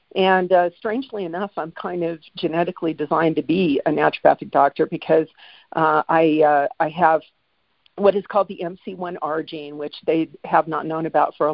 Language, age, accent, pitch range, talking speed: English, 50-69, American, 155-185 Hz, 175 wpm